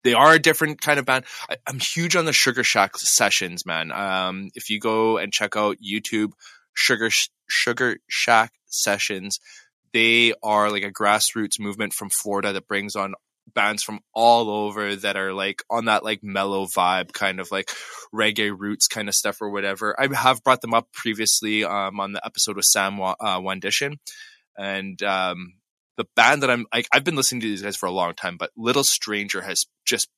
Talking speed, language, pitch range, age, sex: 190 wpm, English, 100-120 Hz, 20-39, male